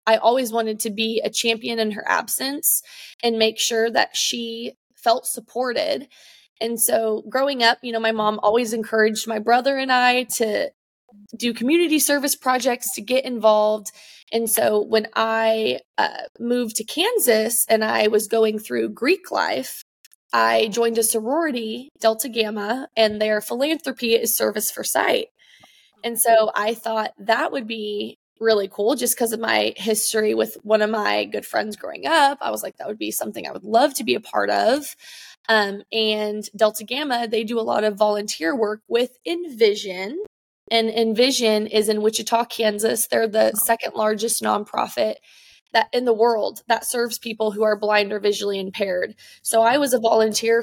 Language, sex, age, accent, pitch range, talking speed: English, female, 20-39, American, 215-240 Hz, 175 wpm